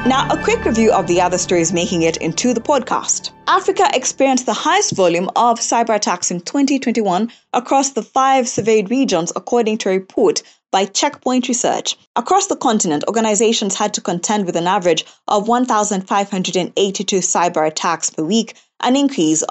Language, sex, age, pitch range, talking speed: English, female, 20-39, 175-235 Hz, 165 wpm